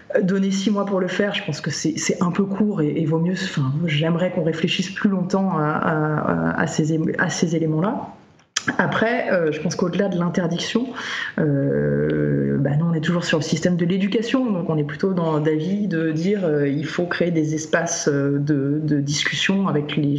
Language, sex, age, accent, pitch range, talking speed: French, female, 30-49, French, 155-190 Hz, 200 wpm